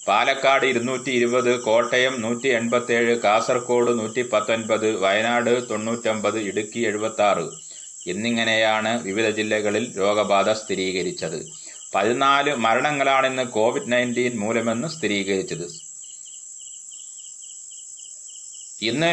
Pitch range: 110-140 Hz